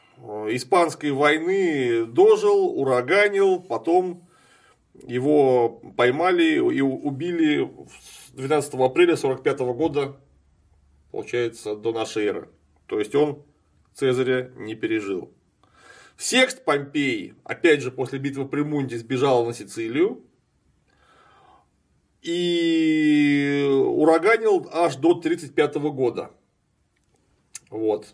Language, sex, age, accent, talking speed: Russian, male, 30-49, native, 85 wpm